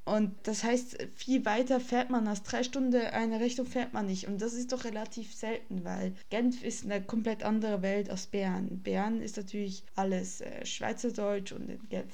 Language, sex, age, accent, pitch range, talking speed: German, female, 20-39, German, 195-240 Hz, 190 wpm